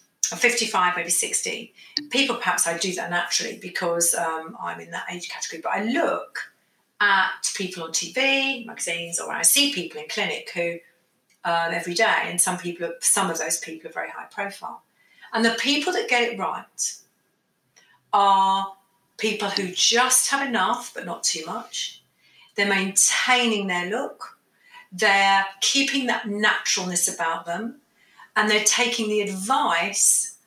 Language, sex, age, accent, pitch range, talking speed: English, female, 40-59, British, 175-225 Hz, 155 wpm